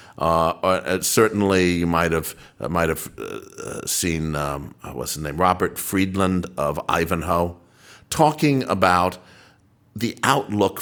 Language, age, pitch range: English, 60-79, 85-110 Hz